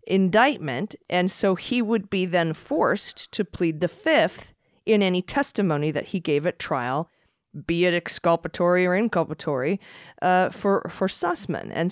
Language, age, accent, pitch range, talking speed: English, 40-59, American, 175-230 Hz, 150 wpm